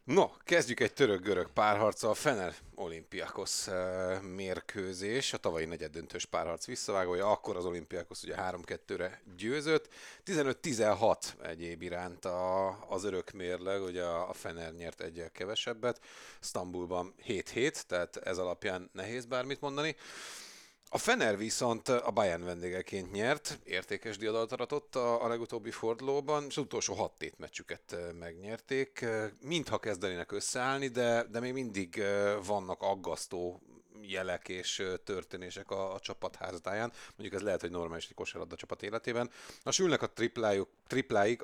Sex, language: male, Hungarian